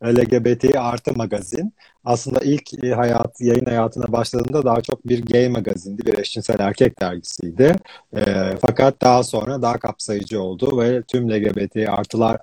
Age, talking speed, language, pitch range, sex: 40-59, 140 wpm, Turkish, 110-140 Hz, male